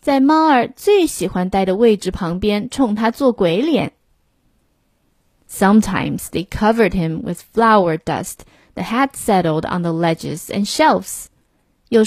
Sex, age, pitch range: female, 20-39, 180-260 Hz